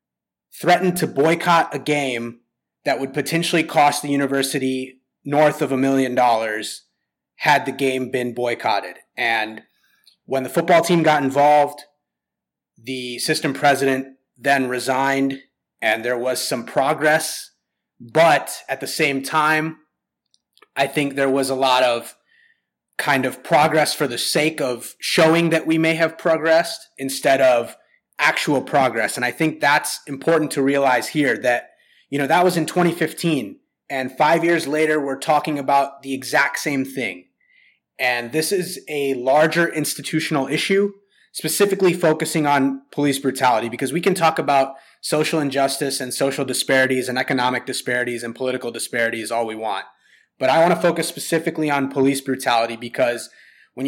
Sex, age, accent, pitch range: male, 30-49, American, 130-160 Hz